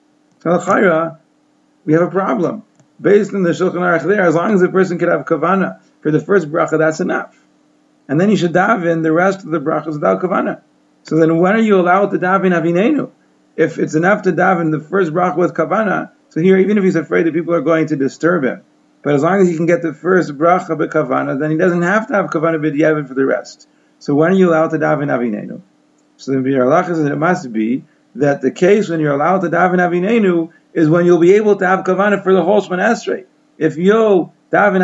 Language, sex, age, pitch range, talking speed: English, male, 40-59, 160-195 Hz, 225 wpm